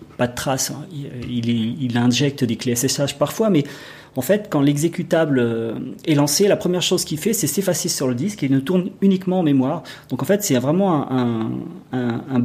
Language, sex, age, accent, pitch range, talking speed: French, male, 40-59, French, 130-170 Hz, 200 wpm